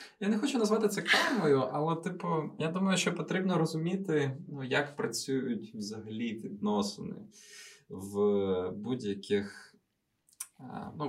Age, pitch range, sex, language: 20-39, 120-175 Hz, male, Ukrainian